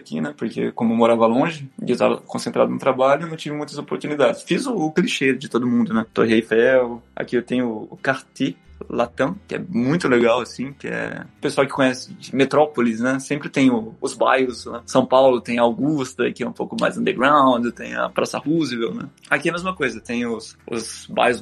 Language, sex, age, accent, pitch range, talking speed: Portuguese, male, 20-39, Brazilian, 115-145 Hz, 215 wpm